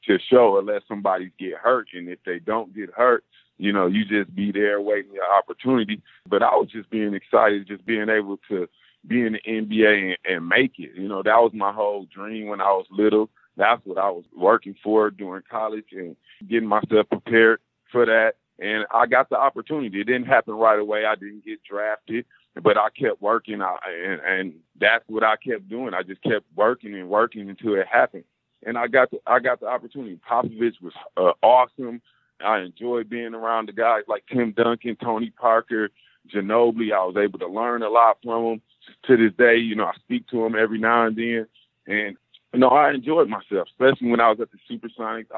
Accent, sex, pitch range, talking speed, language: American, male, 105-115 Hz, 215 wpm, English